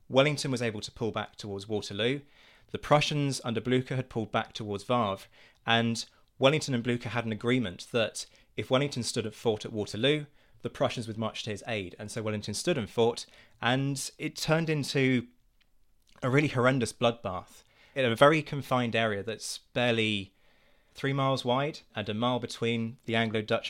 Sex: male